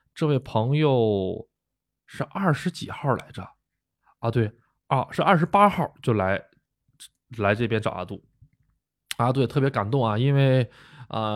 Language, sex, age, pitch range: Chinese, male, 20-39, 105-140 Hz